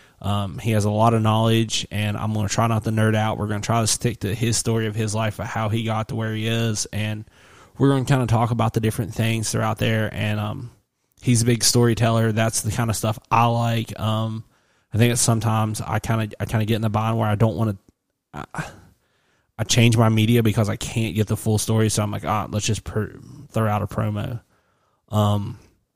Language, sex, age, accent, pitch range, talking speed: English, male, 20-39, American, 105-115 Hz, 245 wpm